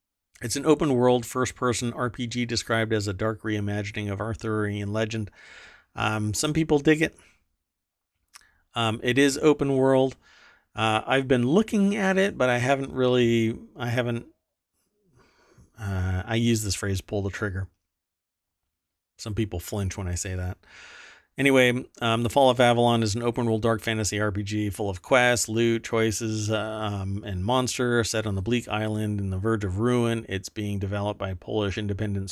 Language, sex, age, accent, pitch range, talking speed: English, male, 40-59, American, 95-115 Hz, 165 wpm